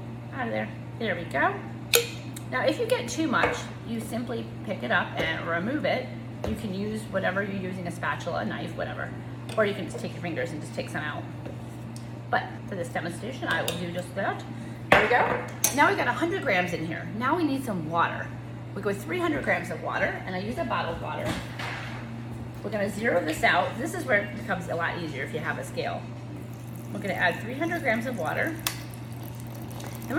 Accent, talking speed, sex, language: American, 215 wpm, female, English